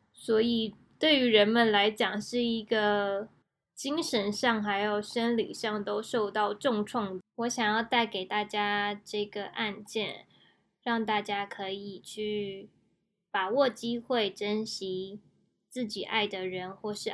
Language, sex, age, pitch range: Chinese, female, 10-29, 205-235 Hz